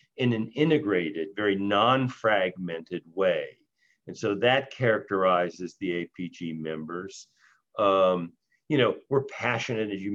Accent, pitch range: American, 90-120 Hz